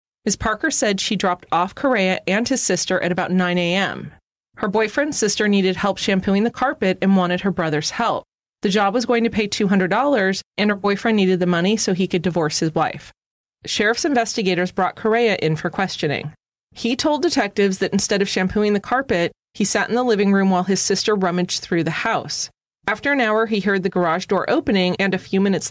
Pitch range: 180-215 Hz